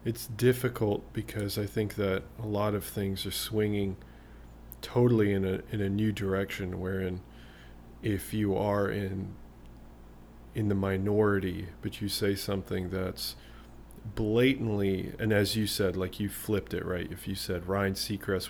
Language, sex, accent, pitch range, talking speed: English, male, American, 90-105 Hz, 150 wpm